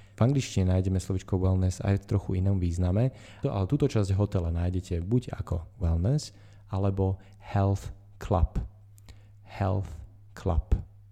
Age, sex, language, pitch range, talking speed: 30-49, male, Slovak, 90-105 Hz, 125 wpm